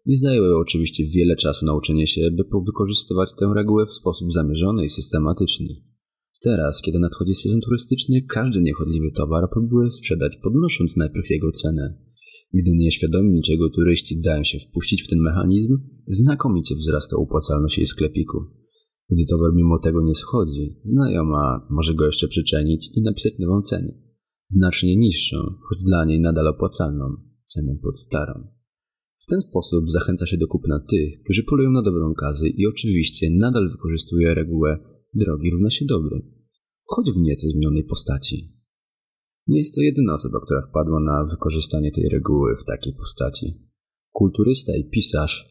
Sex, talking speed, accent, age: male, 150 wpm, native, 30-49